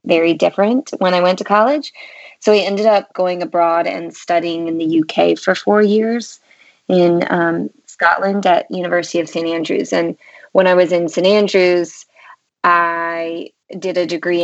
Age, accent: 20-39, American